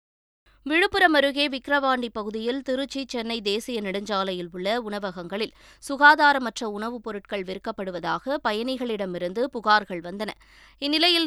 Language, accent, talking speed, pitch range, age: Tamil, native, 95 wpm, 200-265 Hz, 20-39